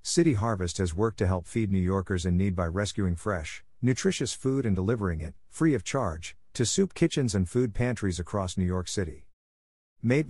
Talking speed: 190 wpm